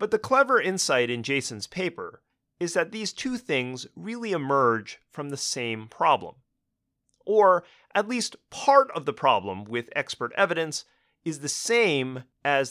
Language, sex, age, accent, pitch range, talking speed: English, male, 30-49, American, 130-190 Hz, 150 wpm